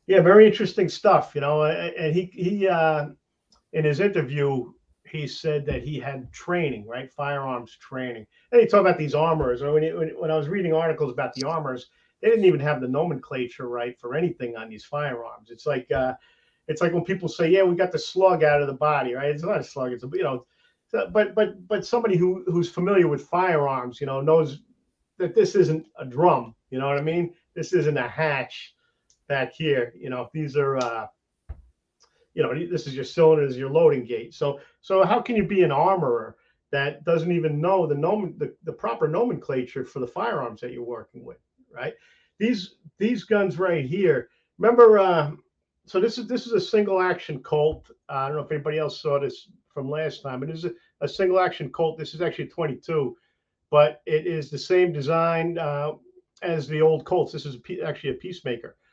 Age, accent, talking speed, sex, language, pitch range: 50-69, American, 210 wpm, male, English, 140-185 Hz